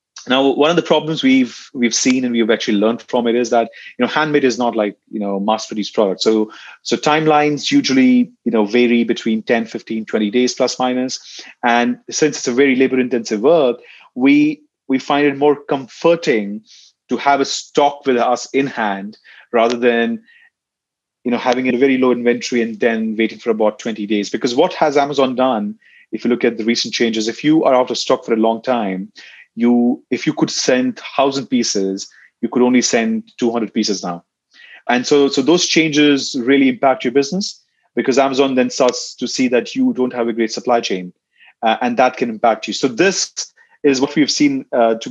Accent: Indian